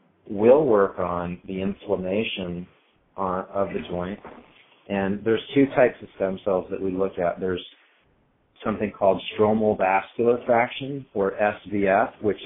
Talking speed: 135 wpm